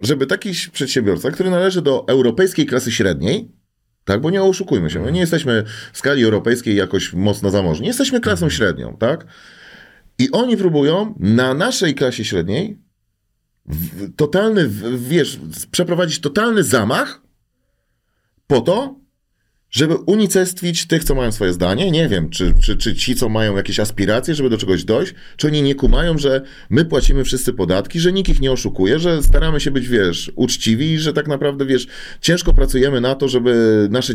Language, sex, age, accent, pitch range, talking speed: Polish, male, 30-49, native, 110-165 Hz, 160 wpm